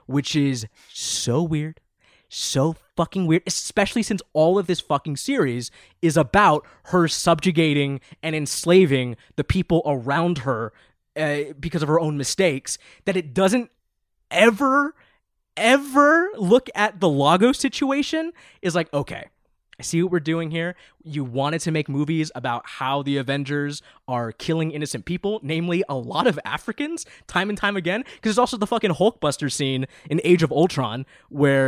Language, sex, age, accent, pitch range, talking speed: English, male, 20-39, American, 140-185 Hz, 155 wpm